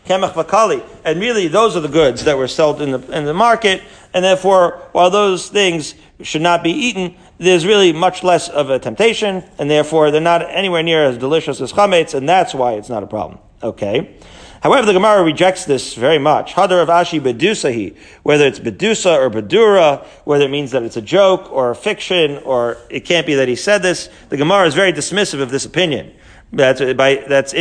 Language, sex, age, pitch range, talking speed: English, male, 40-59, 145-180 Hz, 200 wpm